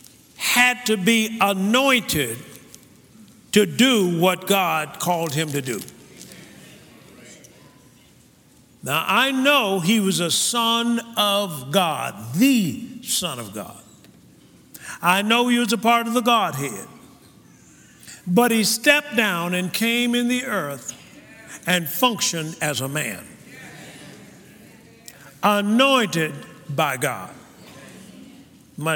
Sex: male